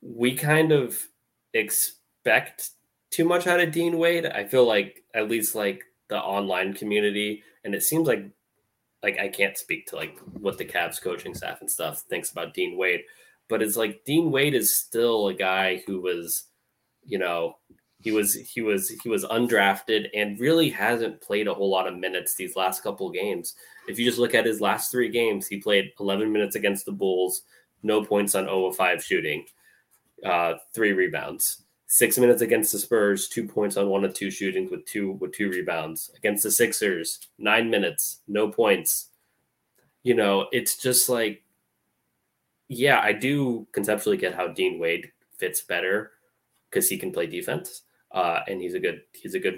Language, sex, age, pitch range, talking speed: English, male, 20-39, 100-160 Hz, 180 wpm